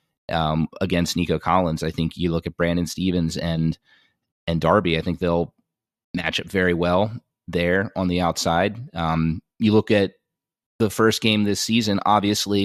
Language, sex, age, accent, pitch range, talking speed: English, male, 30-49, American, 85-105 Hz, 165 wpm